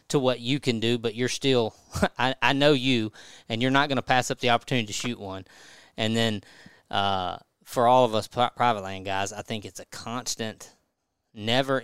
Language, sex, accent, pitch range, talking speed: English, male, American, 105-125 Hz, 205 wpm